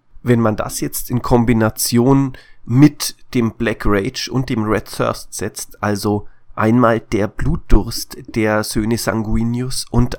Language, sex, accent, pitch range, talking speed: German, male, German, 105-120 Hz, 135 wpm